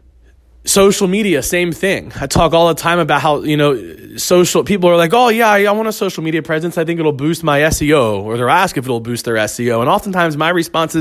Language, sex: English, male